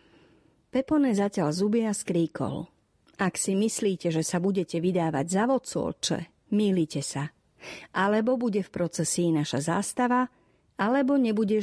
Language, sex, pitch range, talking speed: Slovak, female, 170-225 Hz, 120 wpm